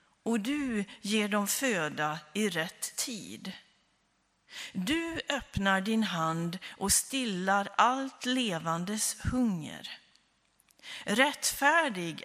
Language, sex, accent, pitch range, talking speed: Swedish, female, native, 180-230 Hz, 90 wpm